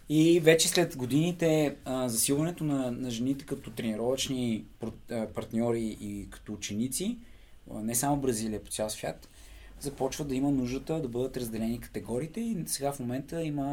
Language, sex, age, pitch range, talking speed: Bulgarian, male, 20-39, 115-145 Hz, 155 wpm